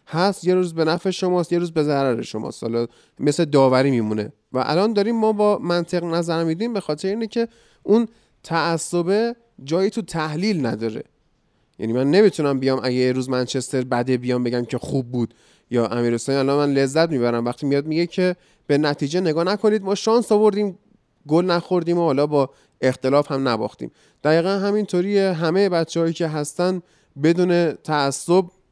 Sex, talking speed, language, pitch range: male, 165 wpm, Persian, 135-180 Hz